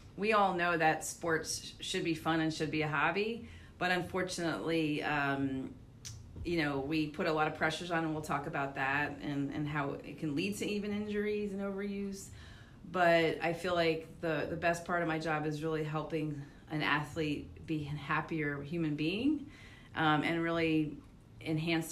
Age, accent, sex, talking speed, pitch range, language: 30-49, American, female, 180 wpm, 145-170 Hz, English